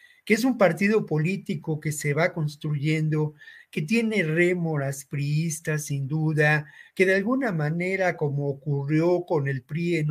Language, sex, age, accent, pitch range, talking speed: Spanish, male, 40-59, Mexican, 145-180 Hz, 150 wpm